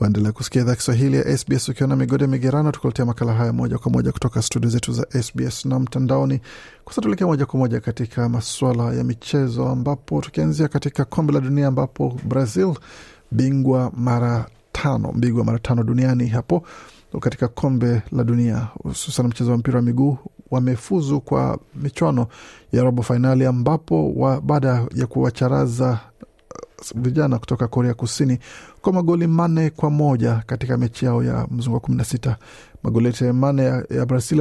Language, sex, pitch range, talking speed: Swahili, male, 120-145 Hz, 145 wpm